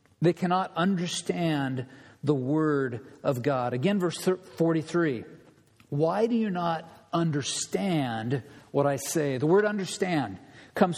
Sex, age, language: male, 50-69, English